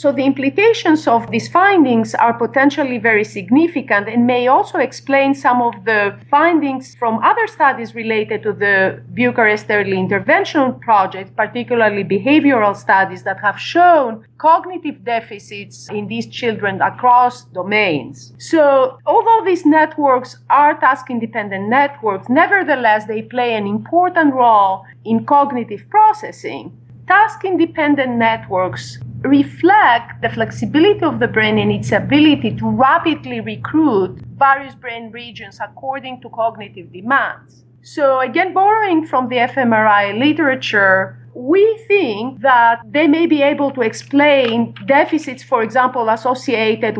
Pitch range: 215-285 Hz